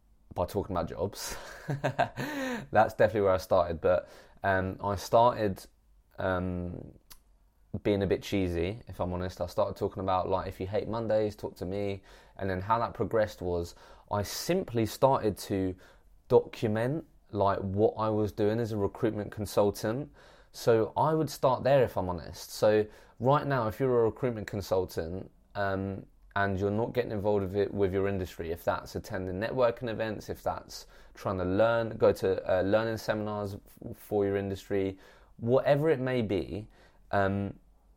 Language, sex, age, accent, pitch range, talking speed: English, male, 20-39, British, 95-115 Hz, 160 wpm